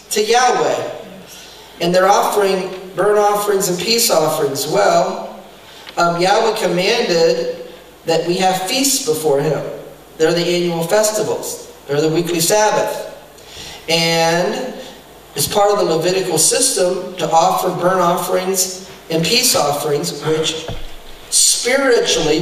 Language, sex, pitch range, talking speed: English, male, 170-215 Hz, 120 wpm